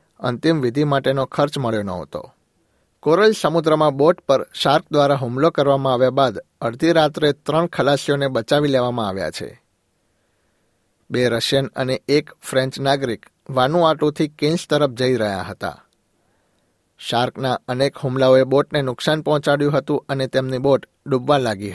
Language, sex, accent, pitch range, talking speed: Gujarati, male, native, 120-145 Hz, 135 wpm